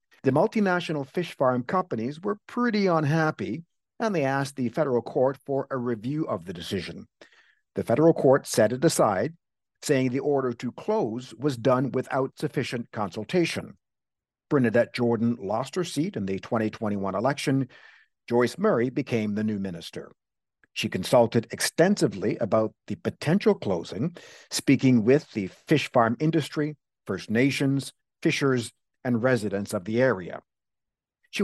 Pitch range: 120-165 Hz